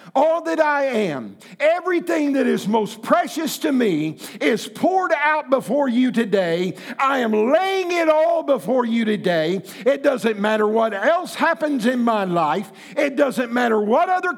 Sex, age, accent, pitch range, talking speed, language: male, 50-69, American, 210-295 Hz, 165 wpm, English